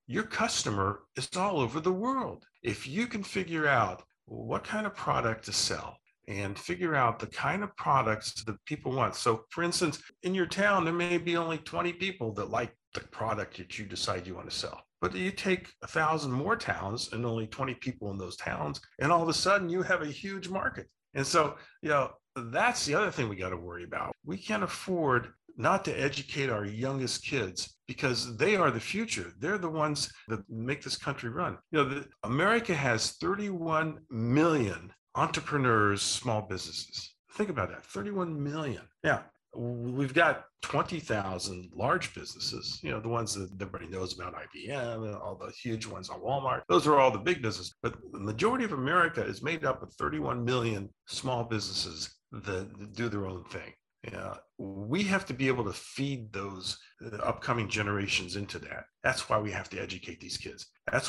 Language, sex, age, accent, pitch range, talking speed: English, male, 50-69, American, 100-155 Hz, 190 wpm